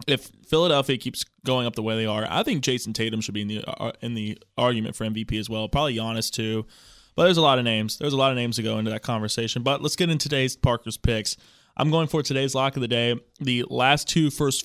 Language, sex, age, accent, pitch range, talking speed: English, male, 20-39, American, 110-130 Hz, 250 wpm